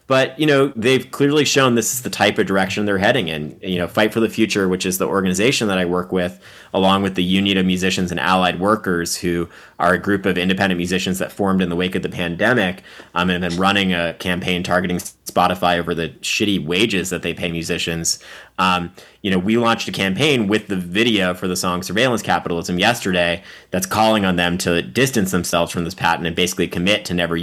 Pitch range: 85-100 Hz